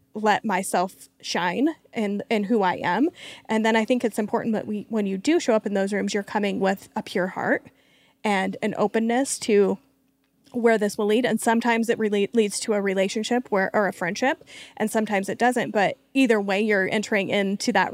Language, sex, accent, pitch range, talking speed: English, female, American, 200-230 Hz, 205 wpm